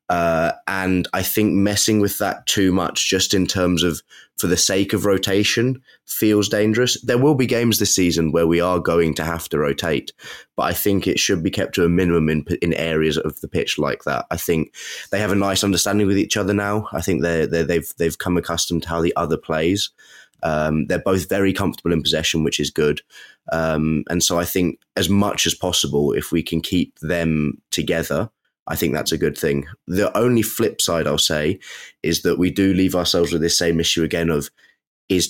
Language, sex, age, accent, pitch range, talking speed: English, male, 20-39, British, 80-95 Hz, 215 wpm